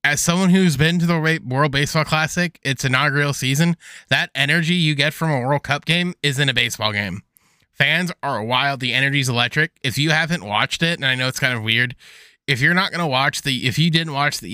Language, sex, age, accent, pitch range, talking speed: English, male, 20-39, American, 125-160 Hz, 225 wpm